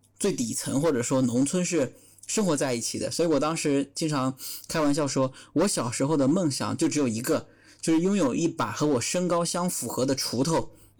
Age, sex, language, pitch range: 20-39, male, Chinese, 130-165 Hz